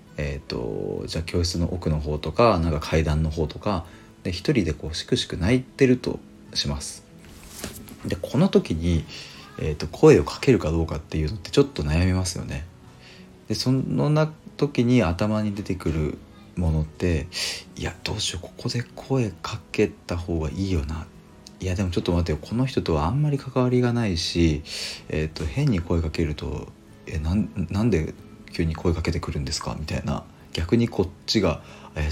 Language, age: Japanese, 40-59